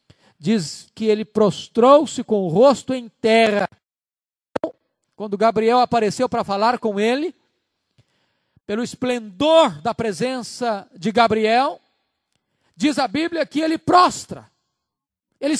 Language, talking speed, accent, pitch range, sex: Portuguese, 110 wpm, Brazilian, 210-305 Hz, male